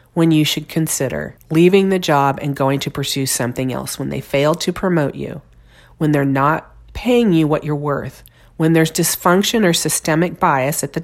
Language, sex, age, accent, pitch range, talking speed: English, female, 40-59, American, 140-185 Hz, 190 wpm